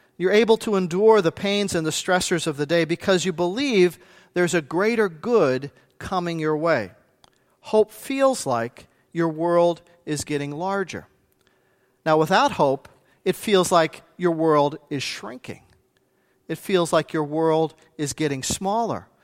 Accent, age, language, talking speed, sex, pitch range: American, 40-59, English, 150 wpm, male, 160-205 Hz